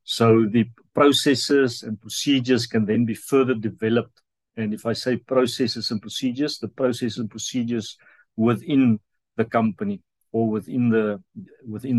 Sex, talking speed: male, 140 wpm